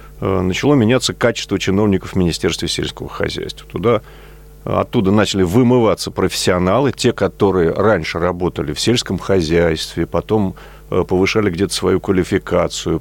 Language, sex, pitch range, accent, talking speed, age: Russian, male, 90-135 Hz, native, 120 wpm, 40-59